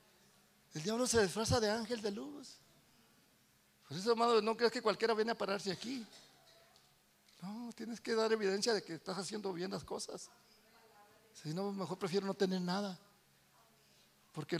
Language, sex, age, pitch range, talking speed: Spanish, male, 50-69, 185-235 Hz, 160 wpm